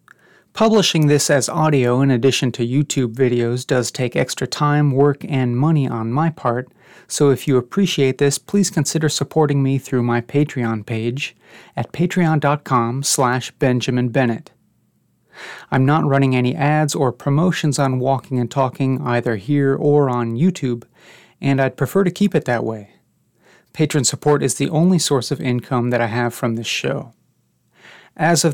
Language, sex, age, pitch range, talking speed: English, male, 30-49, 125-150 Hz, 160 wpm